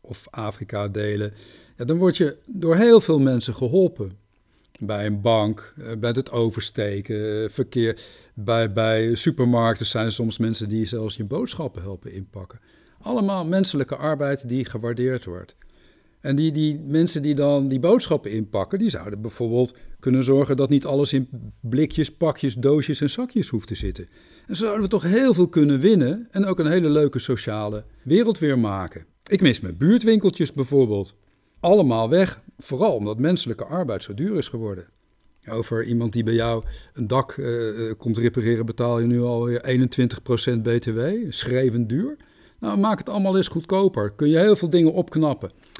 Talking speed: 165 wpm